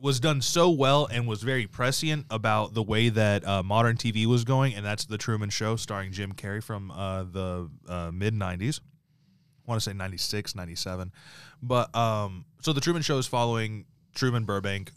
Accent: American